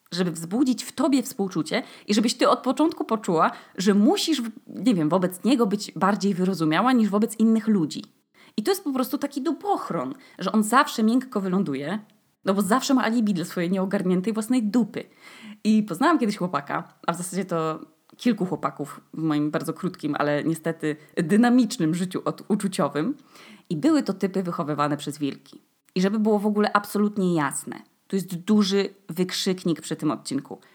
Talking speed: 170 wpm